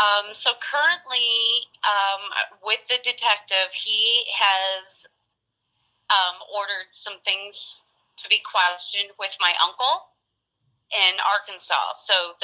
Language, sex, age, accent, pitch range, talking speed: English, female, 30-49, American, 180-215 Hz, 105 wpm